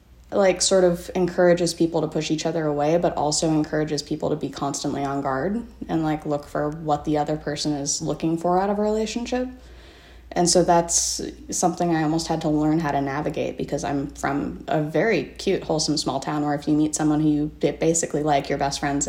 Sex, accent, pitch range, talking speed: female, American, 145-170 Hz, 210 wpm